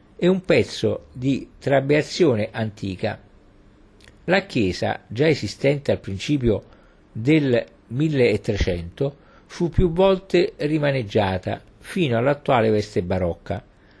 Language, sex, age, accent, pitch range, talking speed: Italian, male, 50-69, native, 100-135 Hz, 95 wpm